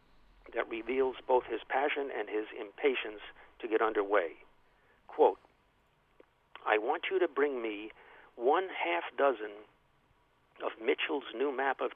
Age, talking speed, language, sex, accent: 50-69, 130 wpm, English, male, American